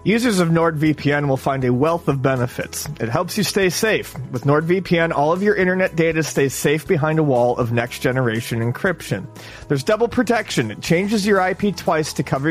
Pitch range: 140-195 Hz